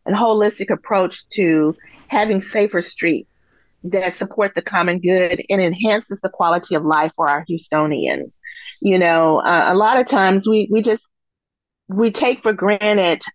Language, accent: English, American